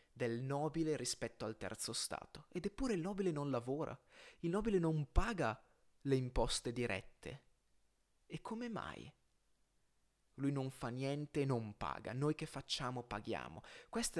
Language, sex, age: Italian, male, 20-39